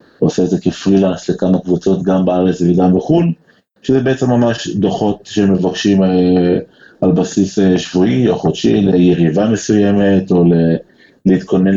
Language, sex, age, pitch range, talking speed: Hebrew, male, 30-49, 90-100 Hz, 120 wpm